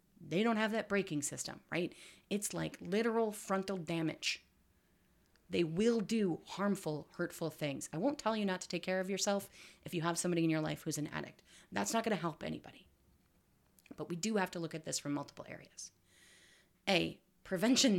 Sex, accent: female, American